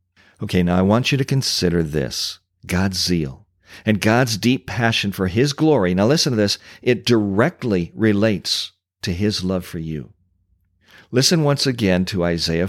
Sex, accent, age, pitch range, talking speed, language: male, American, 50-69, 90-105 Hz, 160 wpm, English